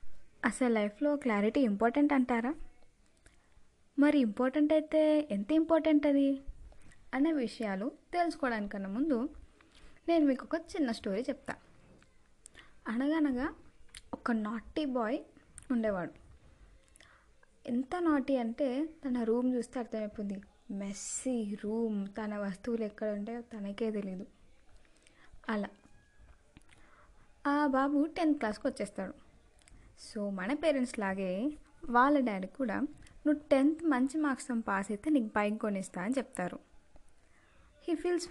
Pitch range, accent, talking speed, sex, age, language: 210-285 Hz, native, 105 wpm, female, 20-39, Telugu